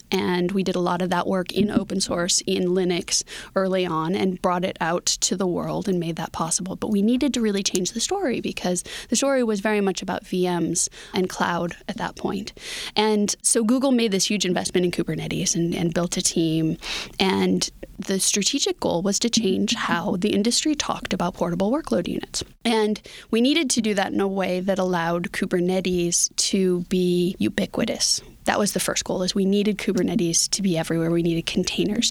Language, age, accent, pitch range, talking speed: English, 20-39, American, 175-210 Hz, 200 wpm